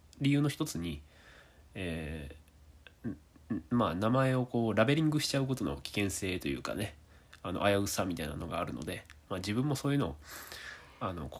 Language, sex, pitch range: Japanese, male, 80-120 Hz